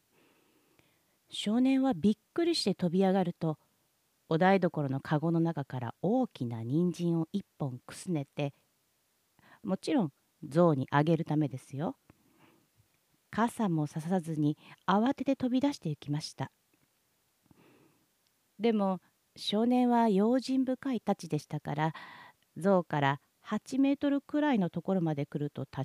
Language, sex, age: Japanese, female, 40-59